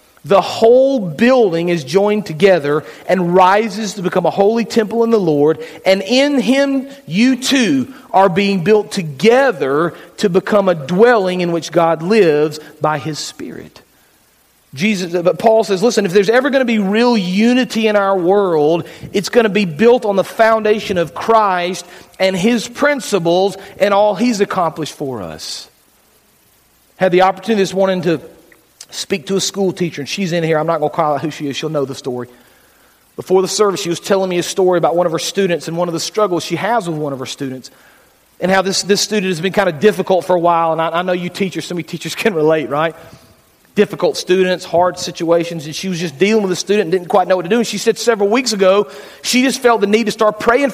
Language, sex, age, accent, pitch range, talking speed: English, male, 40-59, American, 170-215 Hz, 215 wpm